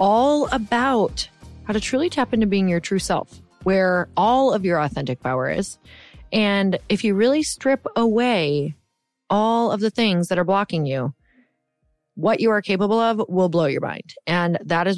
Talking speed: 175 wpm